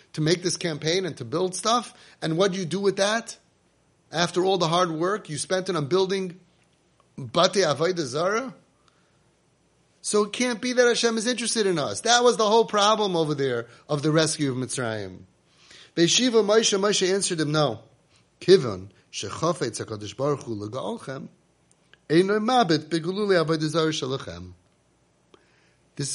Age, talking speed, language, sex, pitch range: 30-49, 120 wpm, English, male, 145-205 Hz